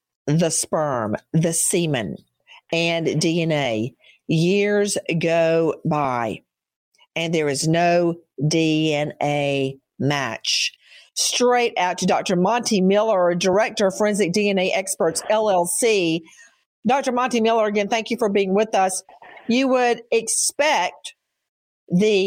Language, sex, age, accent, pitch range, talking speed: English, female, 50-69, American, 165-220 Hz, 110 wpm